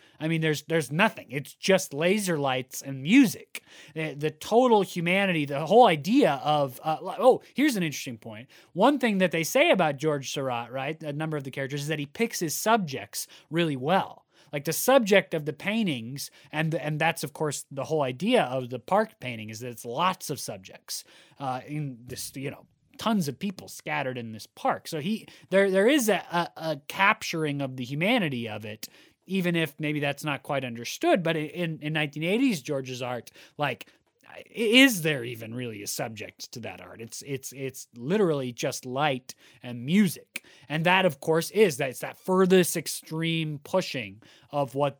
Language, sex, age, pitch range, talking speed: English, male, 20-39, 130-185 Hz, 190 wpm